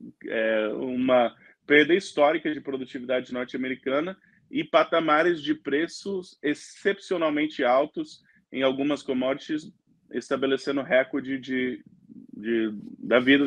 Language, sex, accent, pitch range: Portuguese, male, Brazilian, 130-180 Hz